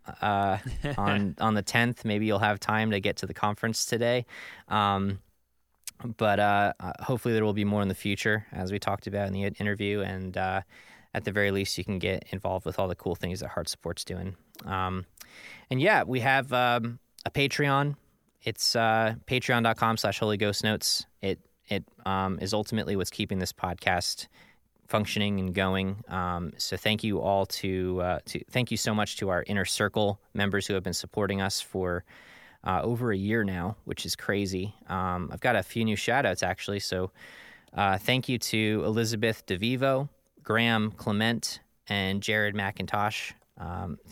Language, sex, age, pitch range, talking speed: English, male, 20-39, 95-110 Hz, 180 wpm